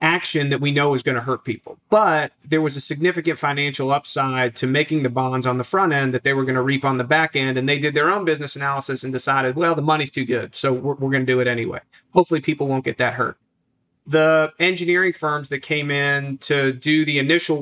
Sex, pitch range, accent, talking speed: male, 130-160 Hz, American, 245 wpm